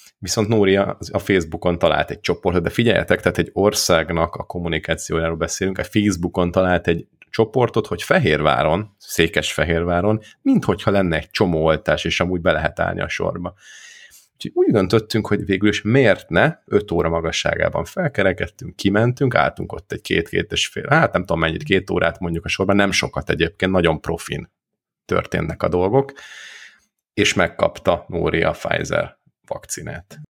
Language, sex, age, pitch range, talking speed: Hungarian, male, 30-49, 90-110 Hz, 150 wpm